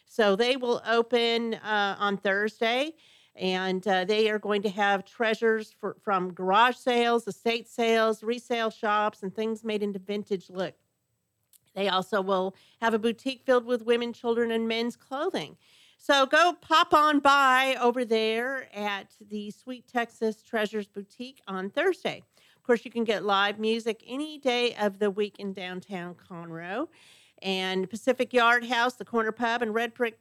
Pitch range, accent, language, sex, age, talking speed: 205-250 Hz, American, English, female, 40-59, 160 wpm